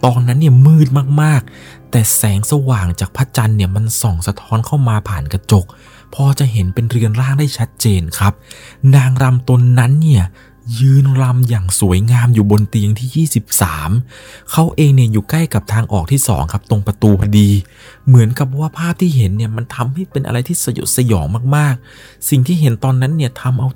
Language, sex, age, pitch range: Thai, male, 20-39, 105-135 Hz